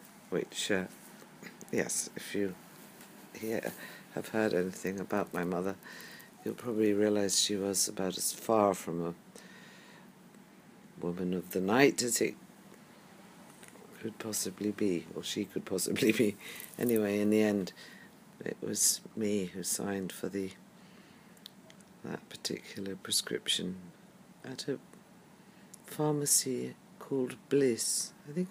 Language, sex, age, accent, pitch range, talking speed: English, female, 50-69, British, 105-155 Hz, 120 wpm